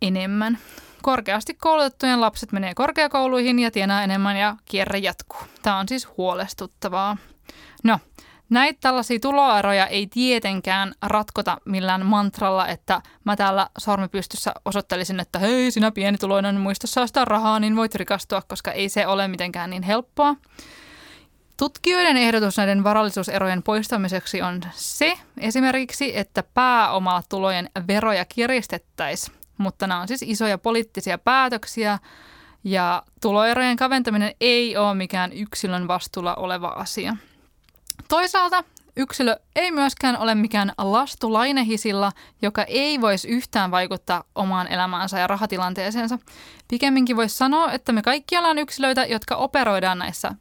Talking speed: 125 wpm